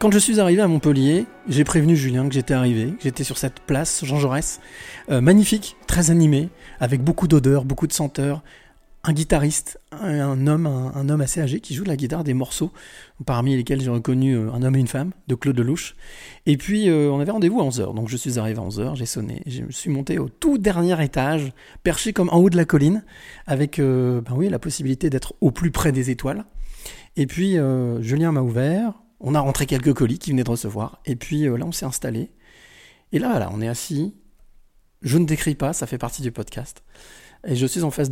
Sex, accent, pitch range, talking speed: male, French, 130-160 Hz, 220 wpm